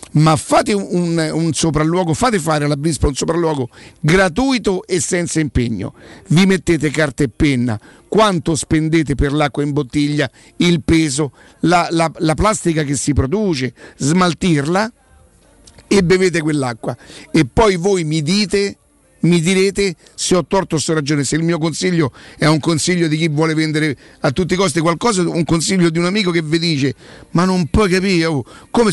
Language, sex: Italian, male